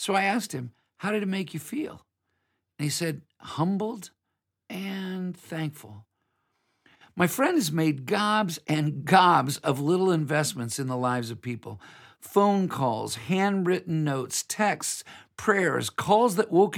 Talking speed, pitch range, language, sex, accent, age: 145 wpm, 135-190 Hz, English, male, American, 50-69